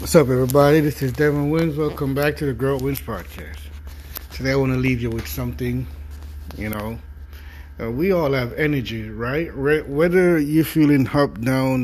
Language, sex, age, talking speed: English, male, 30-49, 180 wpm